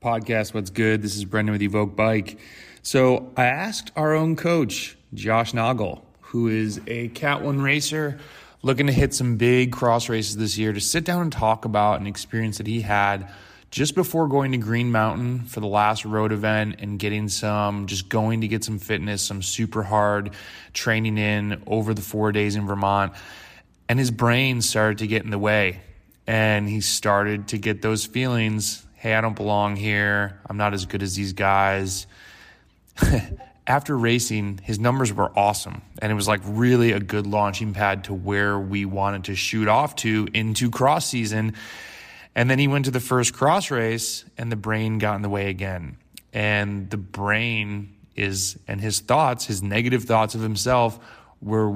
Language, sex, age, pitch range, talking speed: English, male, 20-39, 105-115 Hz, 185 wpm